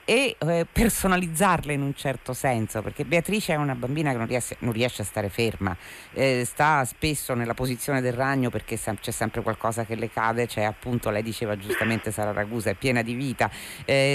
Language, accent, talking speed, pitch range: Italian, native, 190 wpm, 110-145 Hz